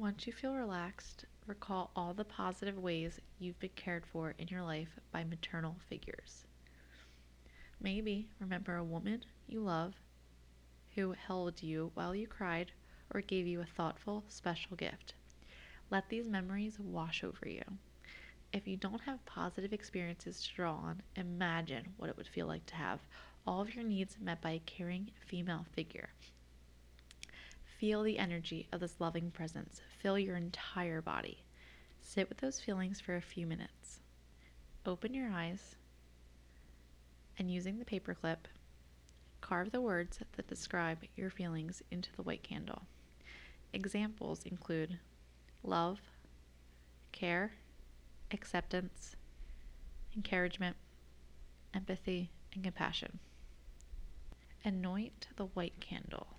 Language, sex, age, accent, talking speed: English, female, 20-39, American, 130 wpm